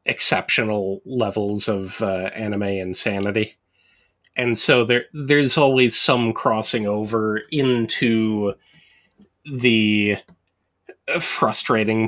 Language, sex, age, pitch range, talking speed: English, male, 30-49, 100-120 Hz, 85 wpm